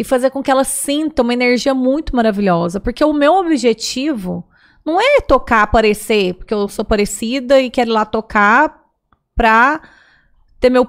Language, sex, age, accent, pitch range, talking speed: Portuguese, female, 30-49, Brazilian, 215-265 Hz, 165 wpm